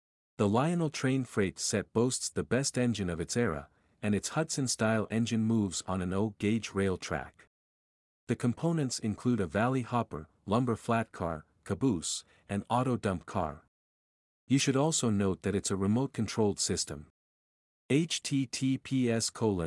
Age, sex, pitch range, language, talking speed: 50-69, male, 85-125 Hz, English, 140 wpm